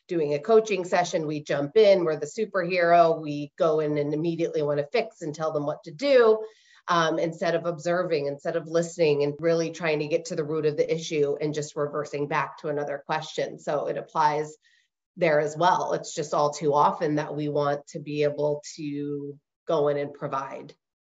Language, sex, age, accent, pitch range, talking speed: English, female, 30-49, American, 150-185 Hz, 200 wpm